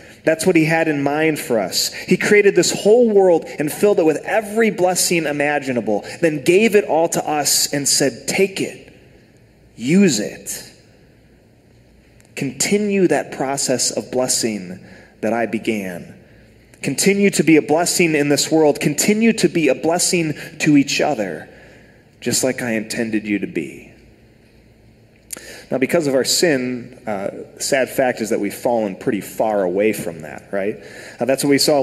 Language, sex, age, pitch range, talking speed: English, male, 30-49, 115-160 Hz, 160 wpm